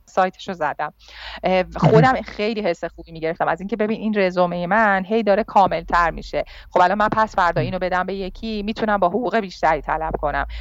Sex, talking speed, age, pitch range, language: female, 190 wpm, 40-59, 170-215 Hz, Persian